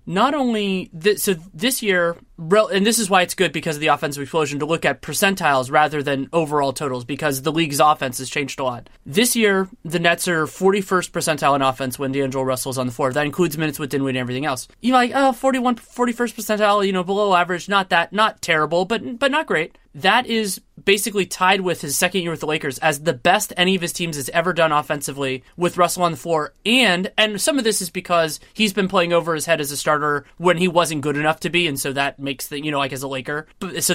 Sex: male